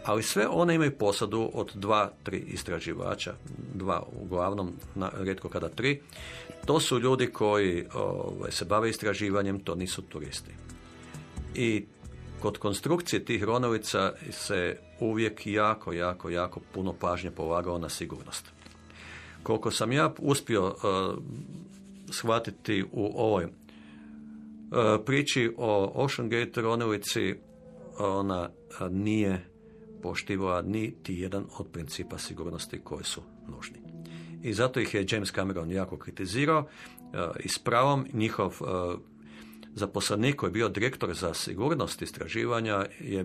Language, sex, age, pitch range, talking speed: Croatian, male, 50-69, 90-115 Hz, 120 wpm